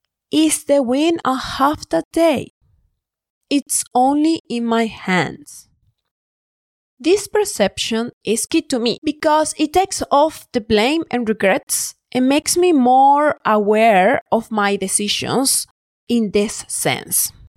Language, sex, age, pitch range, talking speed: English, female, 30-49, 230-305 Hz, 125 wpm